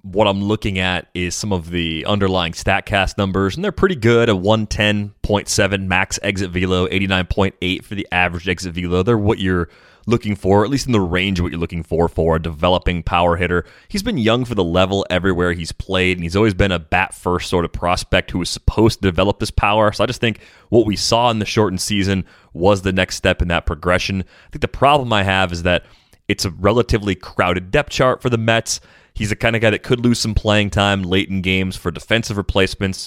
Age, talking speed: 30-49, 225 wpm